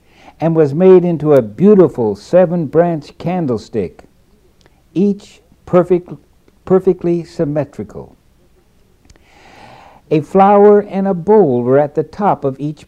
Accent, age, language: American, 60-79, English